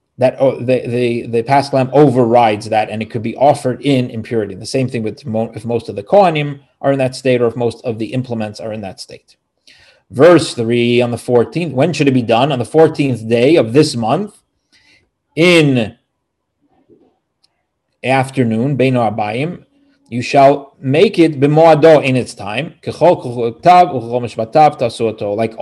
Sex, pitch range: male, 120-150 Hz